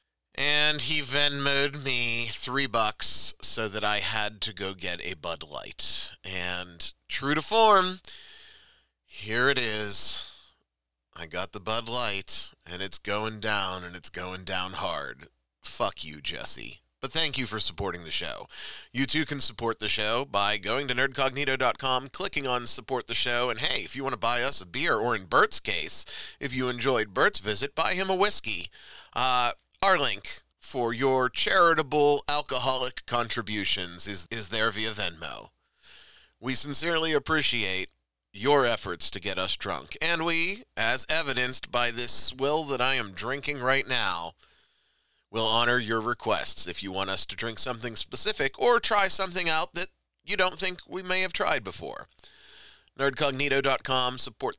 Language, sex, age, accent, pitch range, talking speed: English, male, 30-49, American, 100-145 Hz, 160 wpm